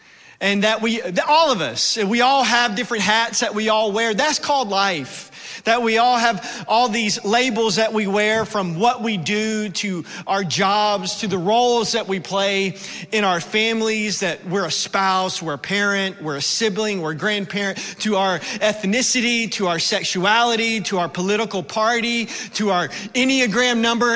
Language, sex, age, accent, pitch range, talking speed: English, male, 40-59, American, 195-245 Hz, 175 wpm